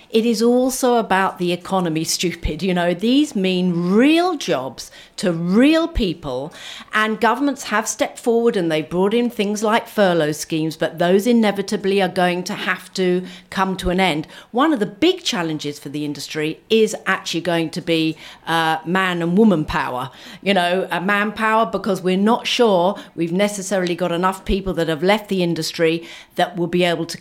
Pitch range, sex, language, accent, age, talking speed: 165-210 Hz, female, English, British, 50-69, 180 wpm